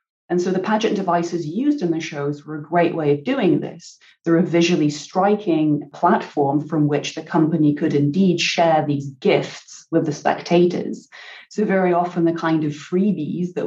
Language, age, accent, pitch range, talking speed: English, 30-49, British, 150-175 Hz, 180 wpm